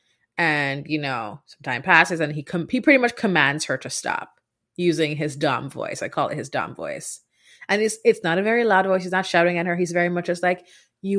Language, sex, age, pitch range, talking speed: English, female, 30-49, 145-185 Hz, 240 wpm